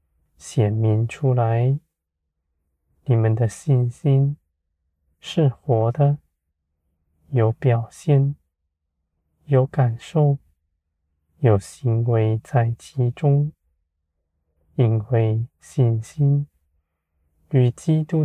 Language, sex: Chinese, male